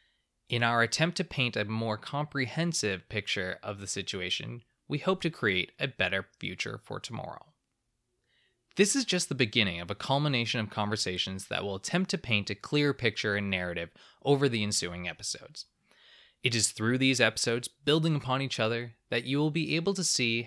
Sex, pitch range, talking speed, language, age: male, 105-140 Hz, 180 wpm, English, 20-39